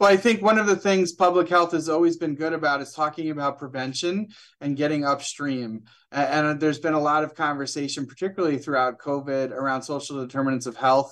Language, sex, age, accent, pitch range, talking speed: English, male, 30-49, American, 125-145 Hz, 195 wpm